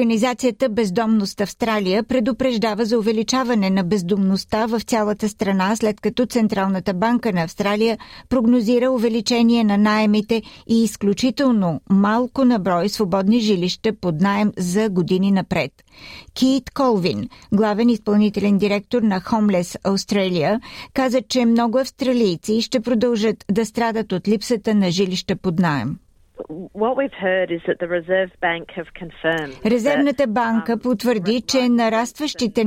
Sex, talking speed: female, 110 wpm